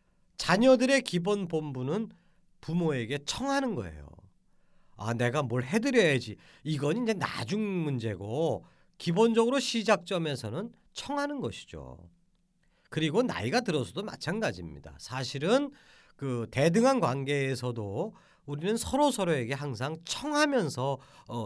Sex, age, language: male, 40-59, Korean